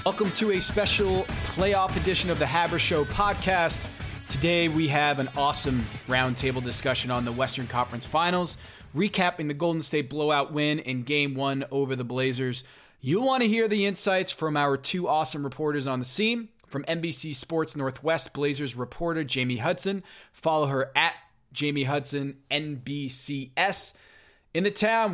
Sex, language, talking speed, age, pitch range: male, English, 160 wpm, 20-39, 130-180 Hz